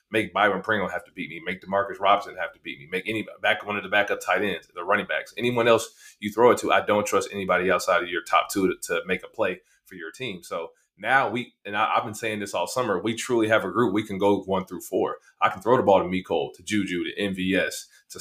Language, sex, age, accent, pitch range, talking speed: English, male, 30-49, American, 105-125 Hz, 270 wpm